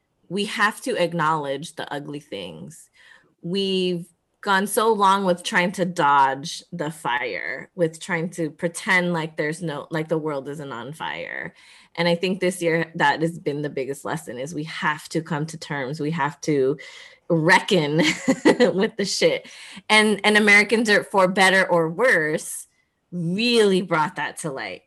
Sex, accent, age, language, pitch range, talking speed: female, American, 20-39, English, 155-190 Hz, 165 wpm